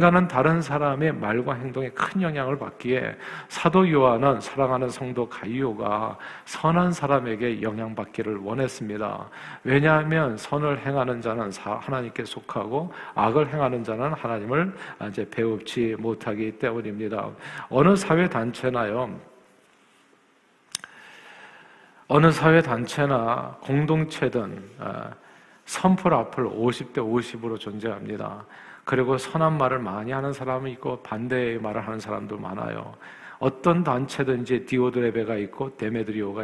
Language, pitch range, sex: Korean, 115-145 Hz, male